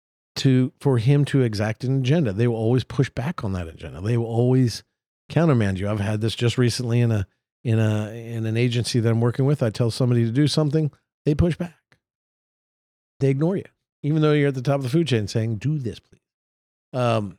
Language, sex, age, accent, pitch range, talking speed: English, male, 50-69, American, 110-135 Hz, 215 wpm